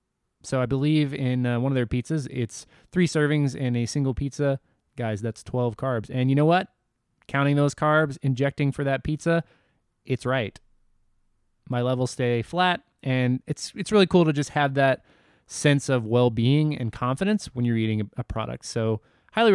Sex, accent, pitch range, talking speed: male, American, 120-150 Hz, 180 wpm